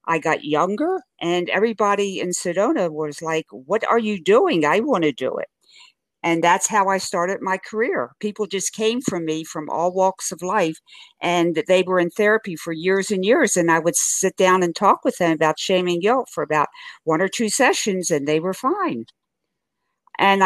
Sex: female